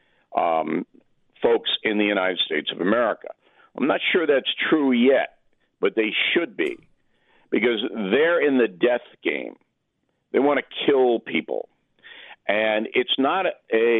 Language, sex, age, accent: English, male, 50-69, American